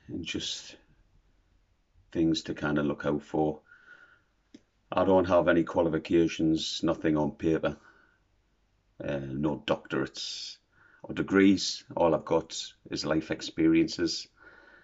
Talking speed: 115 wpm